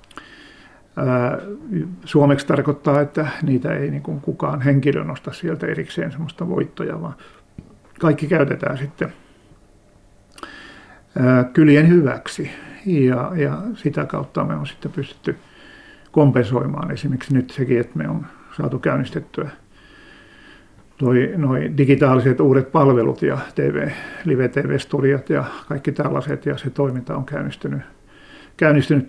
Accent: native